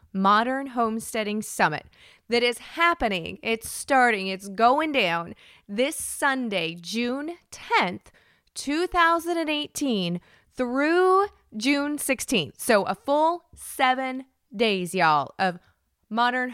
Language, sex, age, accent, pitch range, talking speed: English, female, 20-39, American, 185-250 Hz, 100 wpm